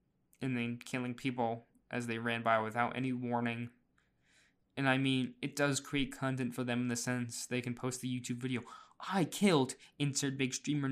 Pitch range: 120-145 Hz